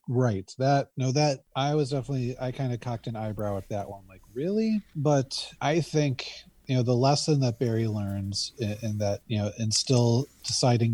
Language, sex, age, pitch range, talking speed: English, male, 30-49, 110-135 Hz, 195 wpm